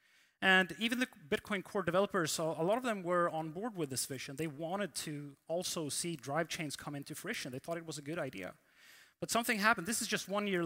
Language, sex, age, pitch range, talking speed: English, male, 30-49, 155-195 Hz, 230 wpm